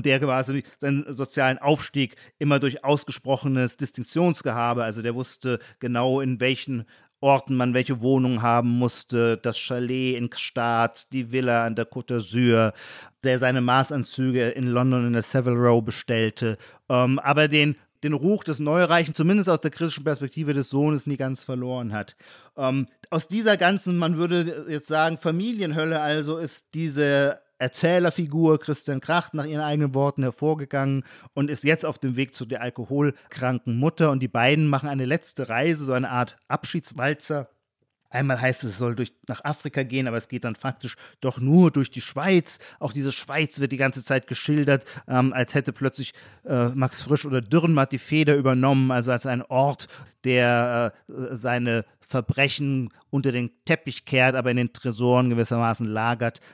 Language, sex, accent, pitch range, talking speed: German, male, German, 125-150 Hz, 165 wpm